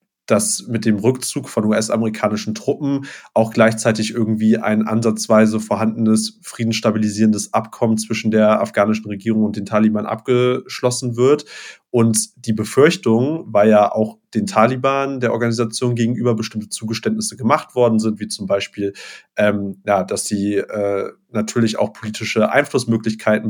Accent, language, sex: German, German, male